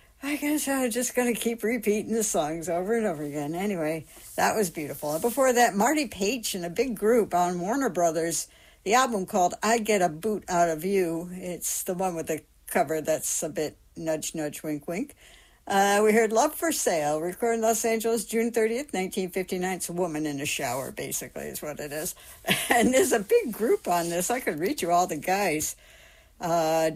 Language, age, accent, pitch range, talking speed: English, 60-79, American, 175-235 Hz, 205 wpm